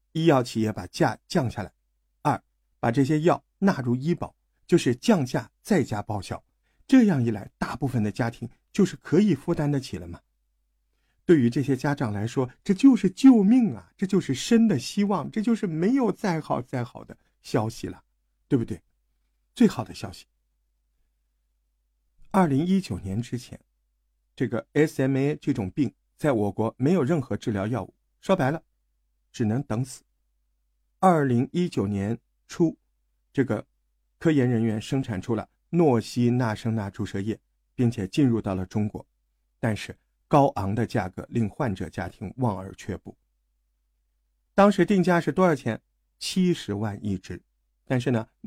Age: 50-69